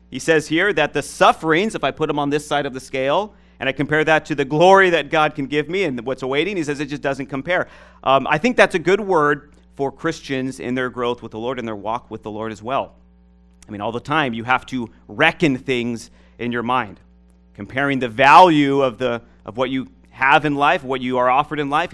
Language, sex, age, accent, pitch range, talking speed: English, male, 40-59, American, 110-145 Hz, 245 wpm